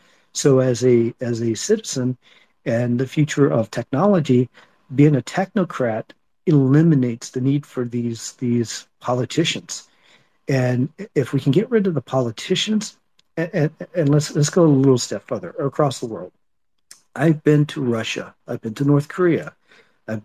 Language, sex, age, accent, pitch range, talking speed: English, male, 50-69, American, 125-160 Hz, 155 wpm